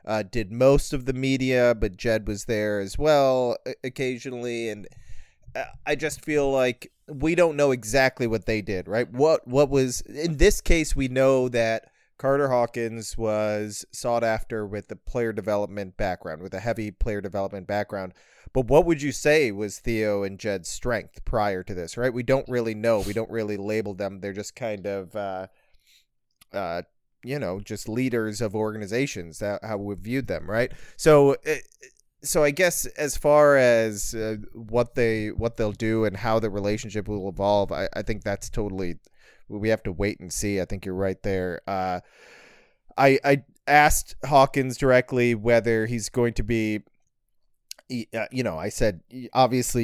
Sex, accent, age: male, American, 30-49